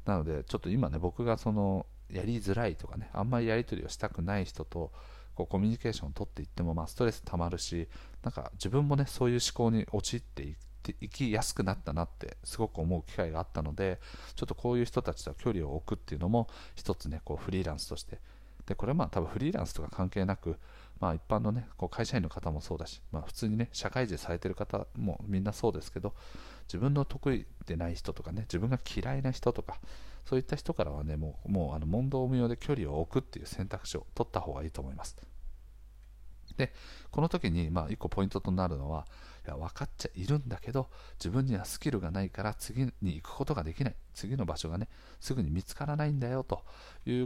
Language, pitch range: Japanese, 85-115 Hz